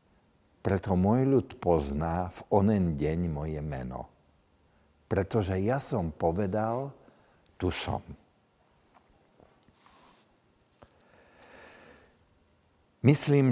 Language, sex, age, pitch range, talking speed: Slovak, male, 60-79, 85-135 Hz, 70 wpm